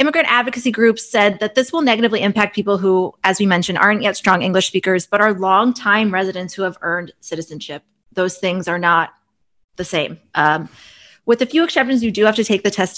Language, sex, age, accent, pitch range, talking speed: English, female, 20-39, American, 175-235 Hz, 210 wpm